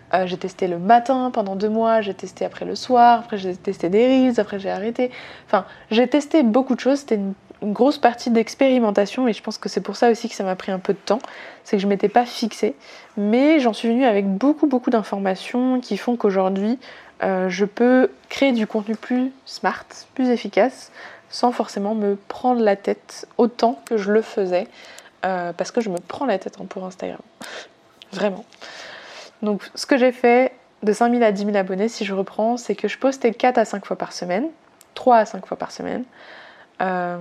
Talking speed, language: 210 wpm, French